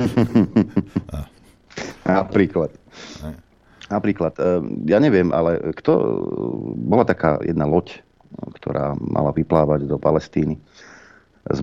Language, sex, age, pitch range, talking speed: Slovak, male, 50-69, 70-85 Hz, 85 wpm